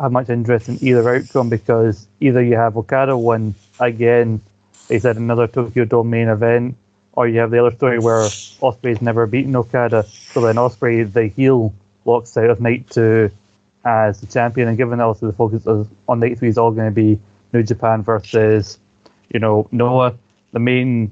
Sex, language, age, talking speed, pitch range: male, English, 20-39, 185 wpm, 110-120 Hz